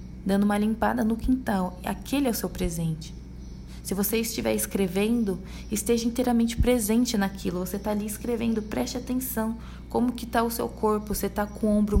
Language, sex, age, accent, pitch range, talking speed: Portuguese, female, 20-39, Brazilian, 170-210 Hz, 175 wpm